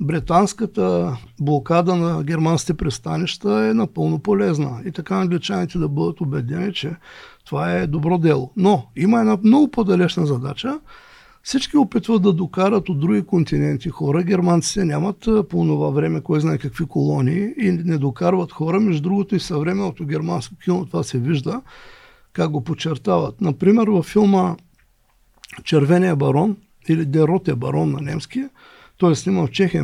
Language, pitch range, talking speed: Bulgarian, 150-200 Hz, 145 wpm